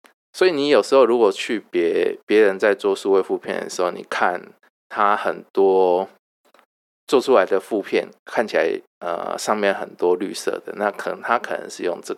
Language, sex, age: Chinese, male, 20-39